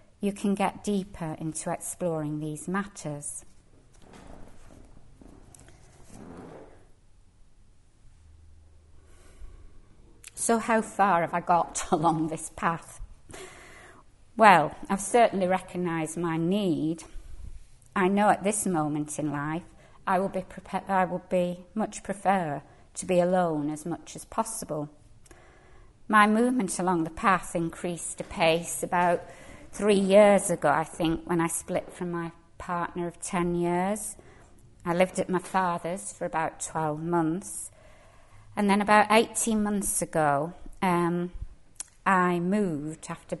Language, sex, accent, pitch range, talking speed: English, female, British, 145-185 Hz, 120 wpm